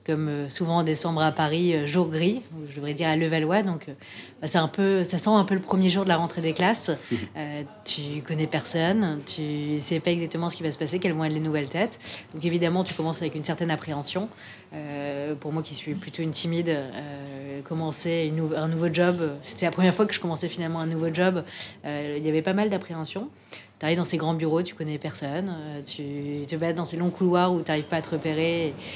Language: French